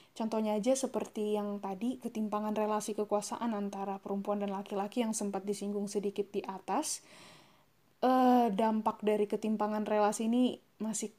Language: Indonesian